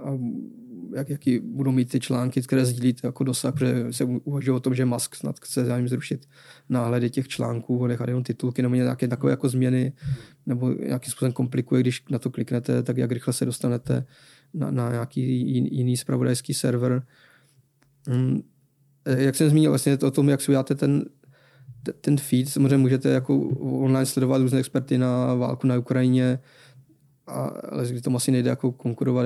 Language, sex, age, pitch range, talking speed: Czech, male, 20-39, 125-135 Hz, 170 wpm